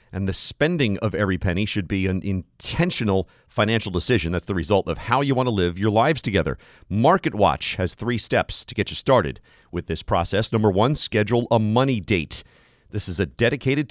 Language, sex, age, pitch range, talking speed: English, male, 40-59, 95-125 Hz, 200 wpm